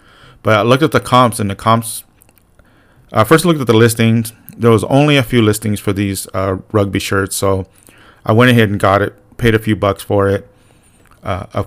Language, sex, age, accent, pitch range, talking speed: English, male, 30-49, American, 100-115 Hz, 215 wpm